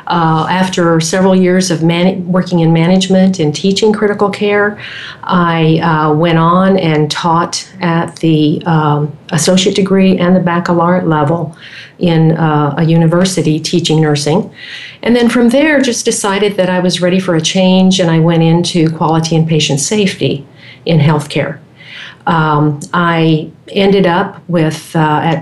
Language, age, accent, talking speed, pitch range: English, 50-69, American, 150 wpm, 155-185 Hz